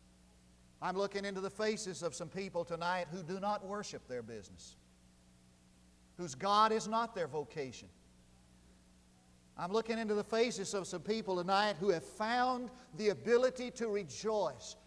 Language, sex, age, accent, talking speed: English, male, 50-69, American, 150 wpm